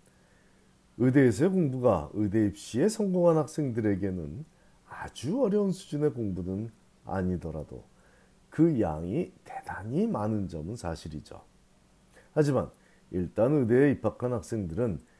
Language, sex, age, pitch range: Korean, male, 40-59, 95-145 Hz